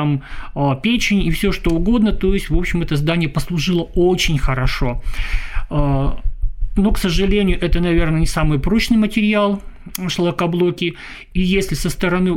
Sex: male